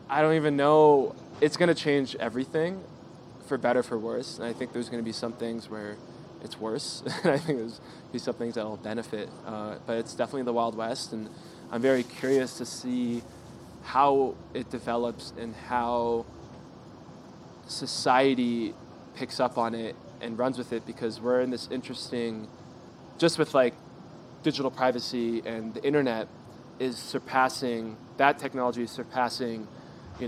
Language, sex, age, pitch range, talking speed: English, male, 20-39, 110-130 Hz, 165 wpm